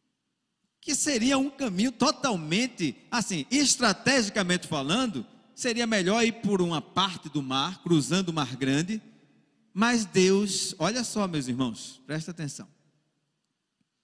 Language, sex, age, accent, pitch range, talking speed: Portuguese, male, 40-59, Brazilian, 165-235 Hz, 120 wpm